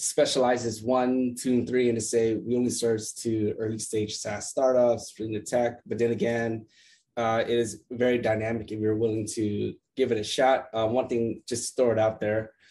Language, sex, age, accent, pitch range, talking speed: English, male, 20-39, American, 110-135 Hz, 210 wpm